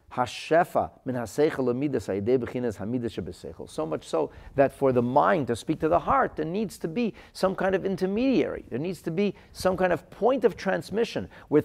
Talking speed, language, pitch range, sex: 160 wpm, English, 105-180 Hz, male